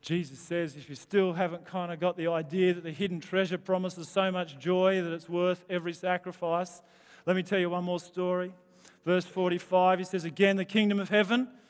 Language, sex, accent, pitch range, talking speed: English, male, Australian, 195-270 Hz, 205 wpm